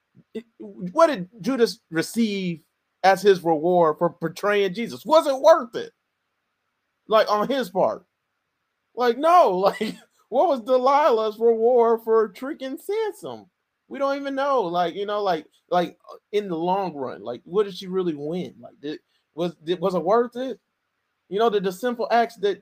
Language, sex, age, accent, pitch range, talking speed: English, male, 30-49, American, 185-235 Hz, 160 wpm